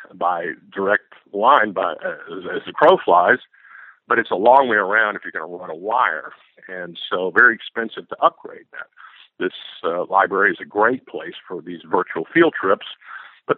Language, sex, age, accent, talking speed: English, male, 50-69, American, 190 wpm